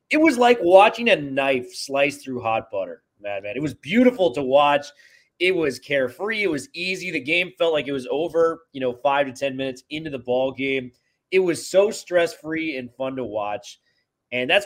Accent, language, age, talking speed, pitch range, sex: American, English, 30-49, 205 wpm, 130-180 Hz, male